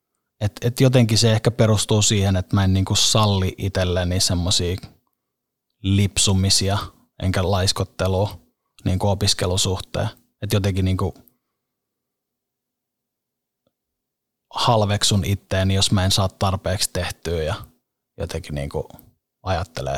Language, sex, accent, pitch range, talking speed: Finnish, male, native, 95-110 Hz, 100 wpm